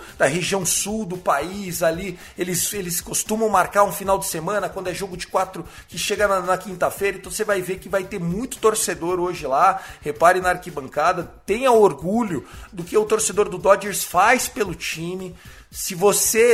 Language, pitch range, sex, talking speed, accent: Portuguese, 180-220 Hz, male, 185 wpm, Brazilian